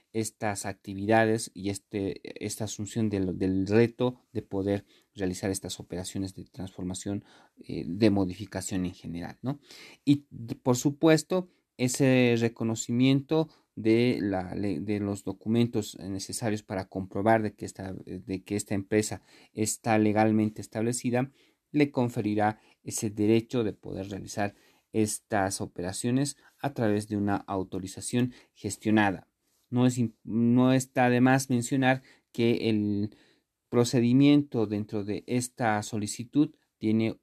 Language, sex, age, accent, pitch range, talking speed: Spanish, male, 40-59, Mexican, 100-125 Hz, 110 wpm